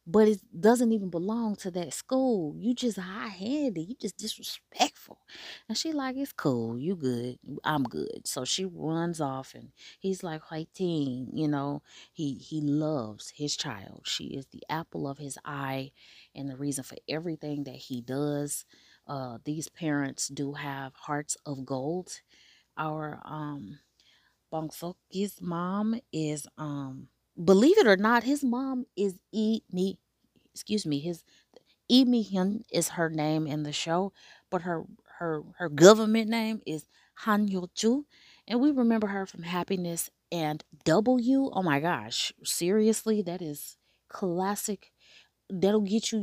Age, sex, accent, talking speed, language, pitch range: 20-39, female, American, 155 wpm, English, 150-210 Hz